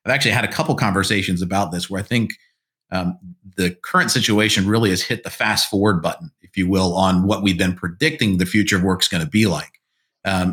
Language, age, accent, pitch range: English, 40-59, American, 95-110 Hz